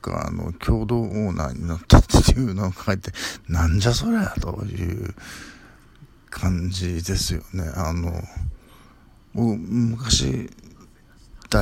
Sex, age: male, 60-79